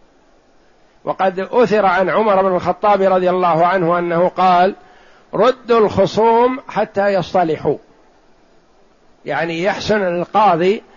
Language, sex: Arabic, male